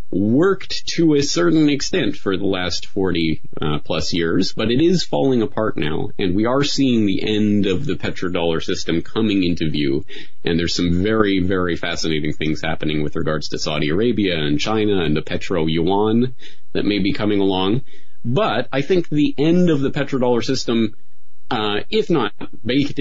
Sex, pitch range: male, 85-115 Hz